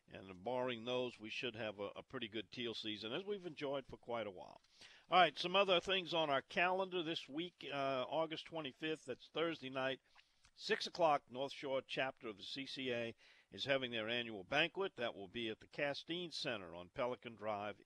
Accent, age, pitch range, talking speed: American, 50-69, 115-155 Hz, 195 wpm